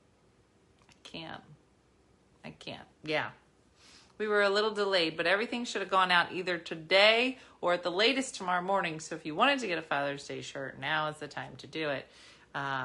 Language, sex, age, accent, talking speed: English, female, 30-49, American, 190 wpm